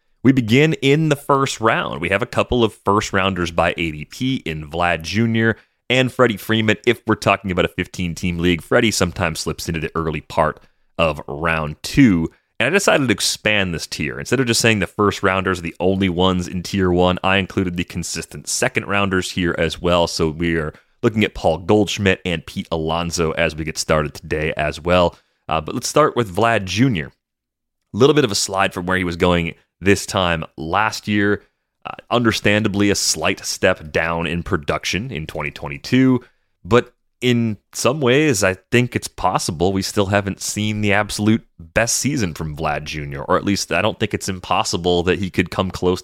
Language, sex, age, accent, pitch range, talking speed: English, male, 30-49, American, 85-110 Hz, 195 wpm